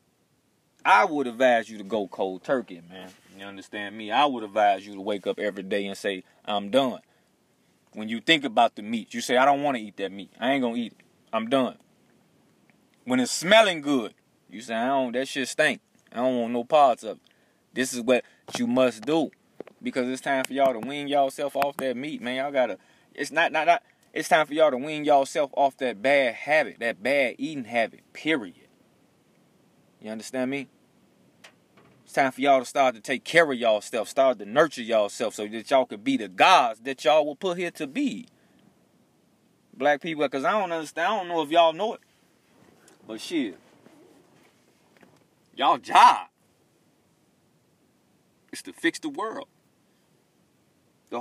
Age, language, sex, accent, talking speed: 20-39, English, male, American, 190 wpm